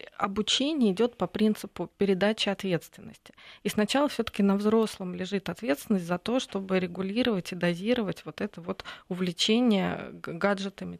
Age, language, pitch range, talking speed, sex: 20-39, Russian, 185-215 Hz, 130 wpm, female